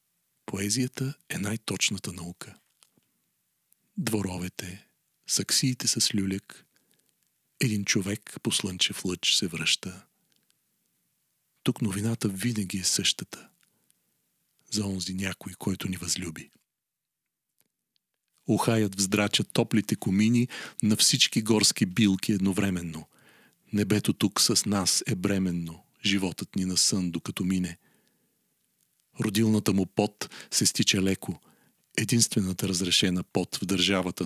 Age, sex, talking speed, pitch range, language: 40-59, male, 100 wpm, 95-115 Hz, Bulgarian